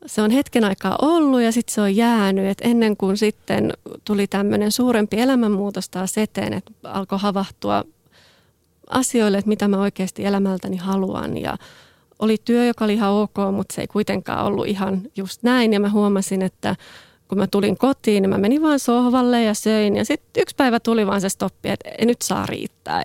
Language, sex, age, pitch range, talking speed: Finnish, female, 30-49, 195-235 Hz, 190 wpm